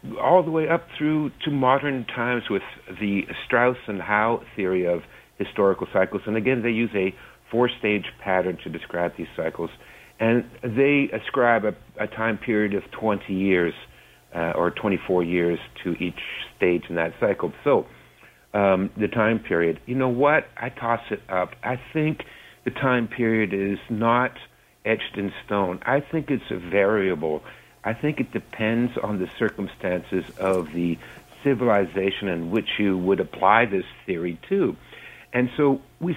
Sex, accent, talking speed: male, American, 160 wpm